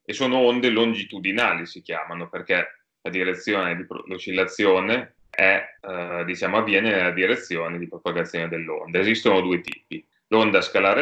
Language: Italian